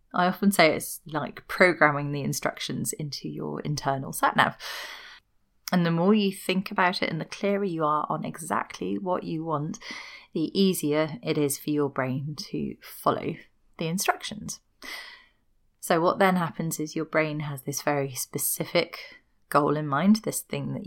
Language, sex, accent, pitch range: English, female, British, 145-200 Hz